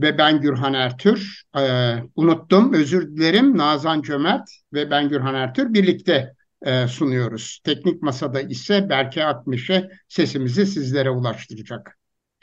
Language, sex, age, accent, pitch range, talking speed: Turkish, male, 60-79, native, 135-185 Hz, 120 wpm